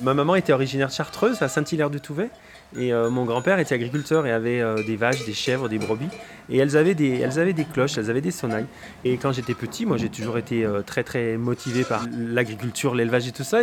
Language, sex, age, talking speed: French, male, 30-49, 235 wpm